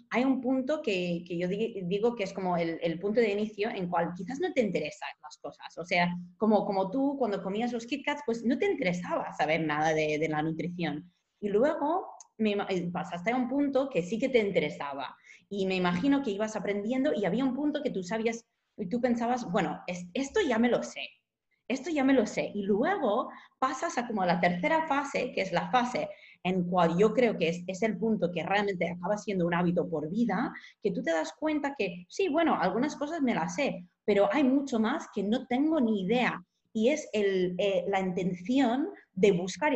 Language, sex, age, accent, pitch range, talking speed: English, female, 20-39, Spanish, 180-255 Hz, 215 wpm